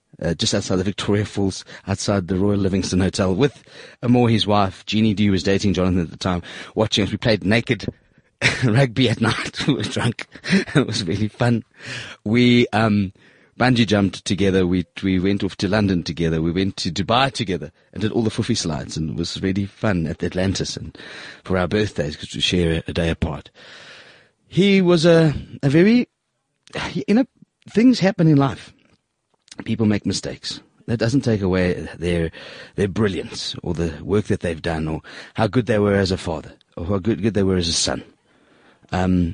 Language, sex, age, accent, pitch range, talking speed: English, male, 30-49, British, 95-125 Hz, 190 wpm